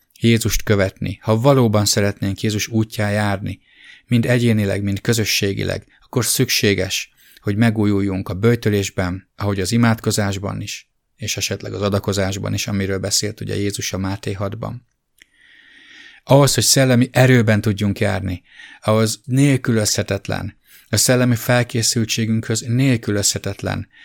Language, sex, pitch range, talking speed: English, male, 100-120 Hz, 115 wpm